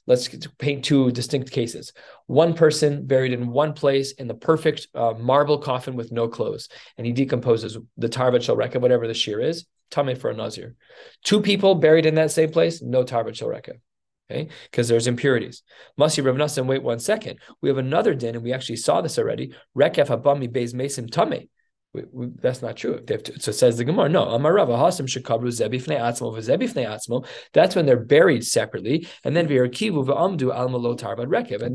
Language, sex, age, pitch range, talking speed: English, male, 20-39, 120-150 Hz, 165 wpm